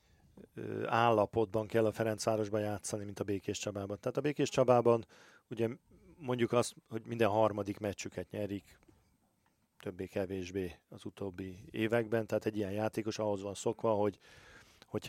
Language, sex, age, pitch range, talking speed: Hungarian, male, 40-59, 100-115 Hz, 135 wpm